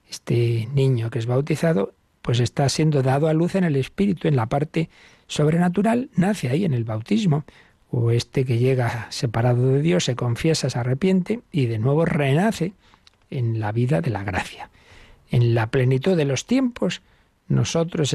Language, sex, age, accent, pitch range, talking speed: Spanish, male, 60-79, Spanish, 120-155 Hz, 170 wpm